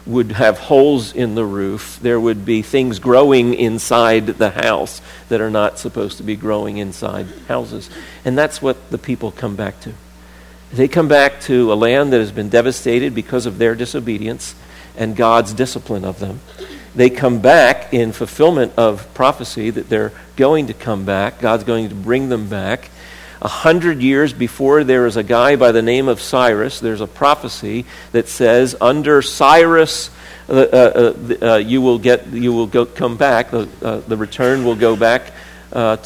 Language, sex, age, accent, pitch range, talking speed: English, male, 50-69, American, 105-130 Hz, 180 wpm